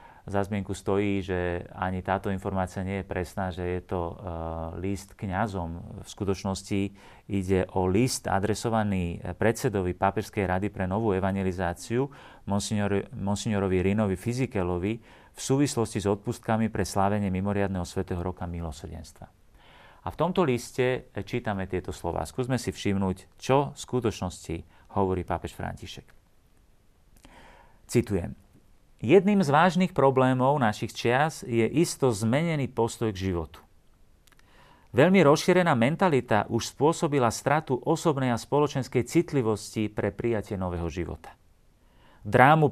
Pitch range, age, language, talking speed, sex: 95-125 Hz, 40-59, Slovak, 120 wpm, male